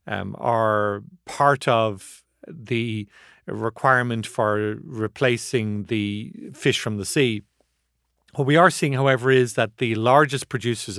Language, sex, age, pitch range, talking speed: English, male, 40-59, 110-130 Hz, 125 wpm